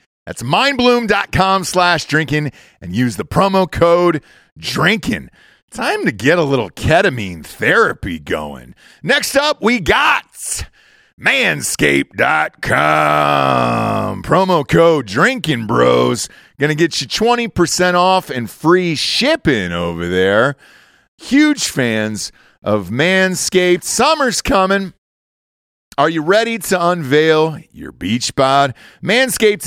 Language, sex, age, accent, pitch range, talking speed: English, male, 40-59, American, 120-180 Hz, 105 wpm